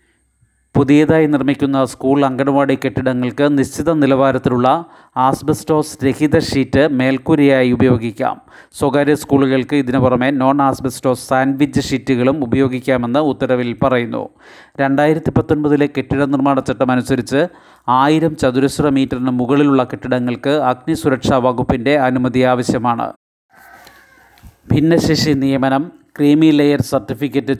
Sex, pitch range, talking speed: male, 130-145 Hz, 90 wpm